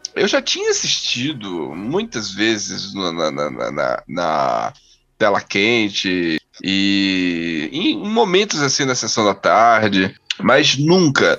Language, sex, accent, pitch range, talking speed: Portuguese, male, Brazilian, 130-200 Hz, 120 wpm